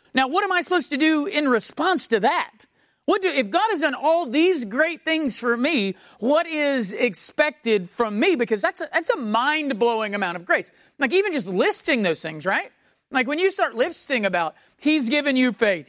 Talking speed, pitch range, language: 205 wpm, 205-300 Hz, English